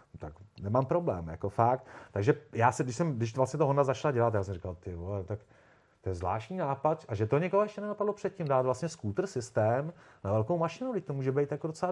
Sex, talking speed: male, 225 wpm